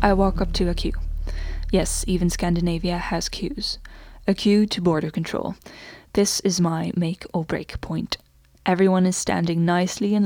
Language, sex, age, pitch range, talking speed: English, female, 10-29, 165-205 Hz, 165 wpm